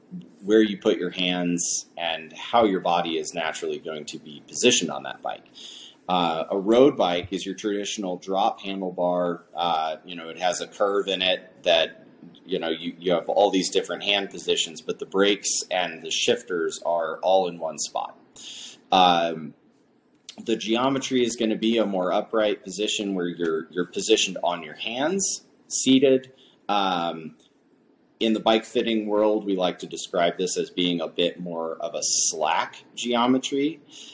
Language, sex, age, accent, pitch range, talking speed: English, male, 30-49, American, 85-110 Hz, 170 wpm